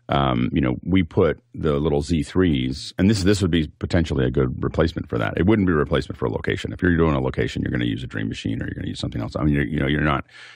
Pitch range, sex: 70-85 Hz, male